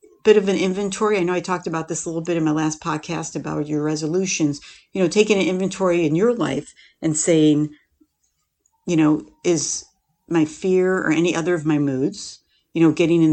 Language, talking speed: English, 205 wpm